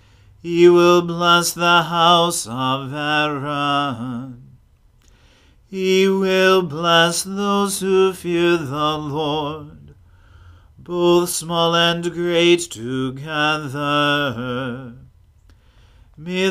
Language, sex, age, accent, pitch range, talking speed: English, male, 40-59, American, 130-175 Hz, 75 wpm